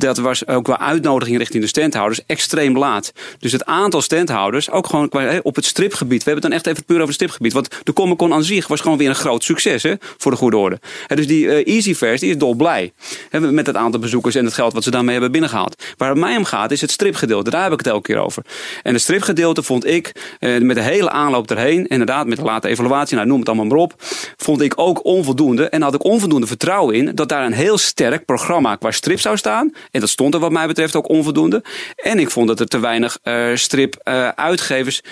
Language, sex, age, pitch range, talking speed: Dutch, male, 30-49, 120-160 Hz, 230 wpm